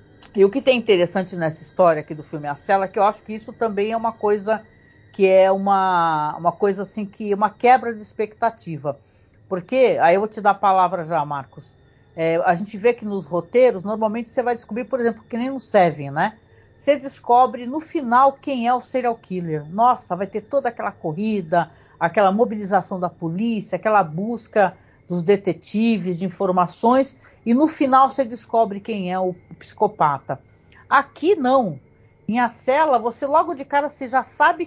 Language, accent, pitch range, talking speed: Portuguese, Brazilian, 175-240 Hz, 185 wpm